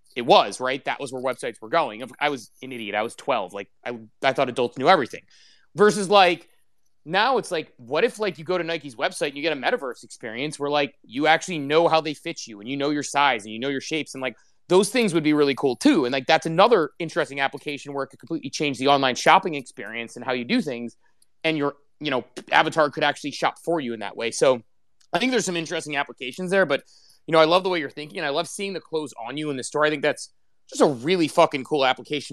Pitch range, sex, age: 135-175 Hz, male, 30-49